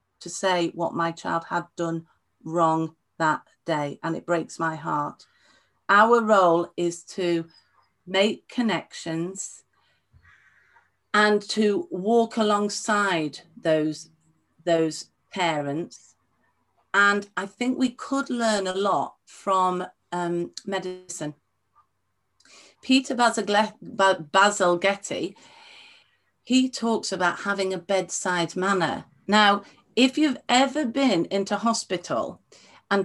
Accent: British